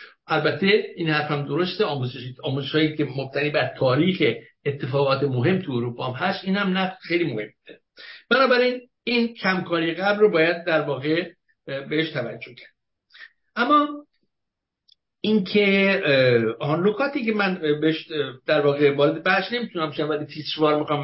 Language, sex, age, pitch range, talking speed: English, male, 60-79, 150-210 Hz, 130 wpm